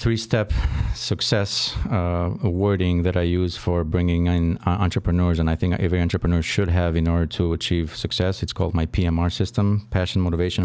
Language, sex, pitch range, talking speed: English, male, 85-95 Hz, 175 wpm